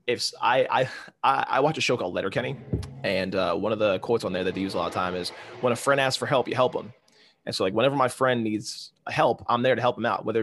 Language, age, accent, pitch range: English, 20-39, American, 115-165 Hz